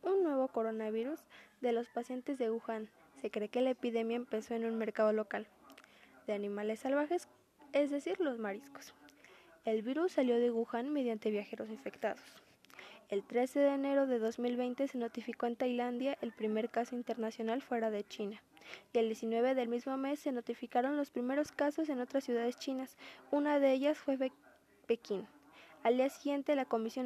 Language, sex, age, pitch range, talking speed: Spanish, female, 10-29, 230-280 Hz, 165 wpm